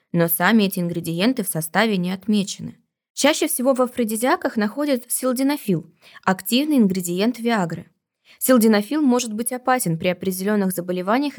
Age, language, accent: 20-39, Russian, native